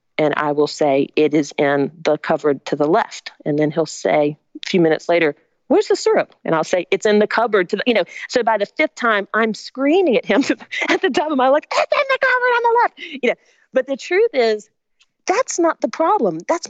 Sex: female